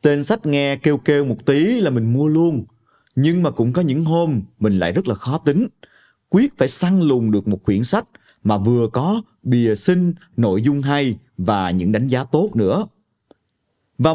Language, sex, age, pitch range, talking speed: Vietnamese, male, 30-49, 115-175 Hz, 195 wpm